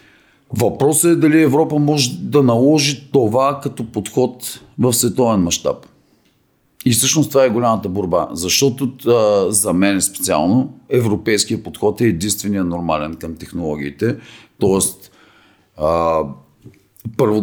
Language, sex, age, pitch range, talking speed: Bulgarian, male, 50-69, 95-130 Hz, 115 wpm